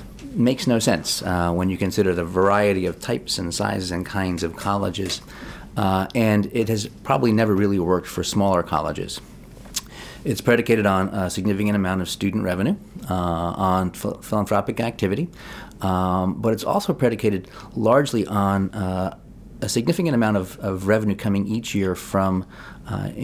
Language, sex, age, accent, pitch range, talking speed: English, male, 30-49, American, 90-105 Hz, 155 wpm